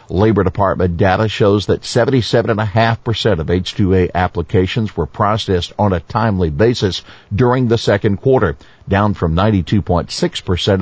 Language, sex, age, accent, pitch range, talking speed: English, male, 50-69, American, 95-120 Hz, 120 wpm